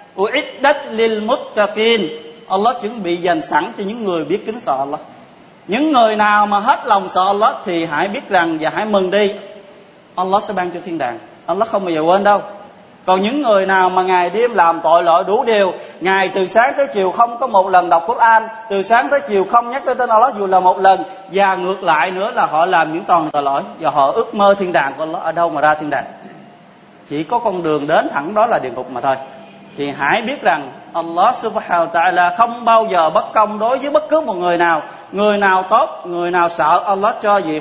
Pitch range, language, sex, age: 175-220 Hz, Vietnamese, male, 20-39